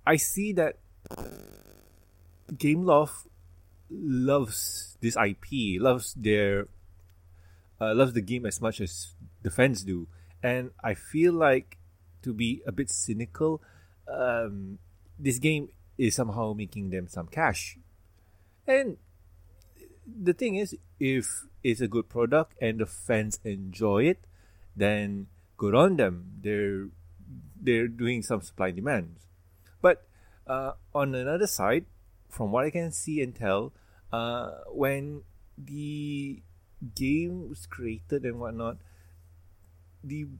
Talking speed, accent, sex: 125 wpm, Malaysian, male